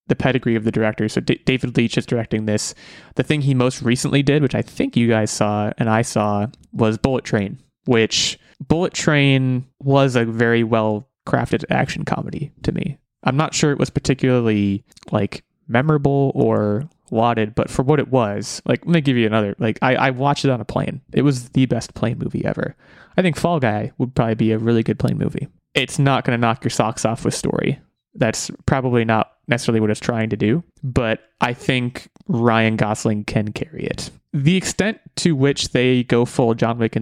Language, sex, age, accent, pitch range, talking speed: English, male, 20-39, American, 110-140 Hz, 205 wpm